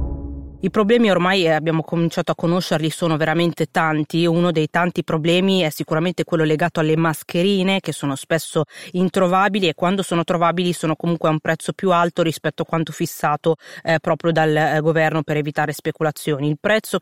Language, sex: Italian, female